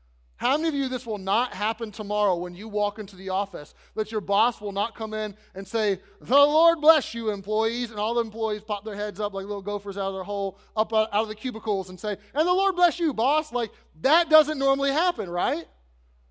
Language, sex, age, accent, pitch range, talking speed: English, male, 30-49, American, 195-255 Hz, 230 wpm